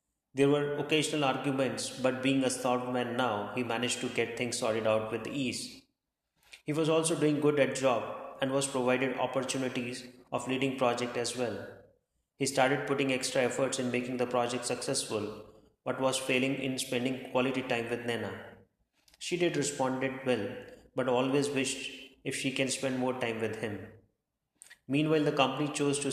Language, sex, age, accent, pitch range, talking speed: English, male, 20-39, Indian, 120-135 Hz, 170 wpm